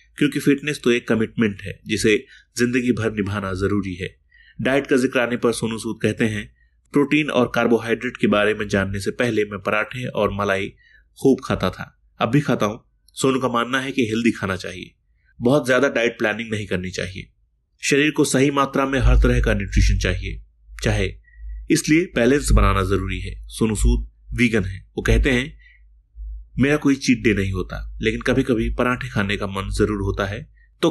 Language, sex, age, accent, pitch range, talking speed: Hindi, male, 30-49, native, 95-125 Hz, 185 wpm